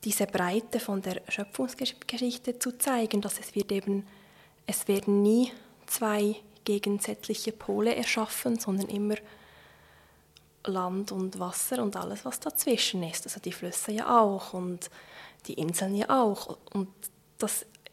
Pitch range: 200-230 Hz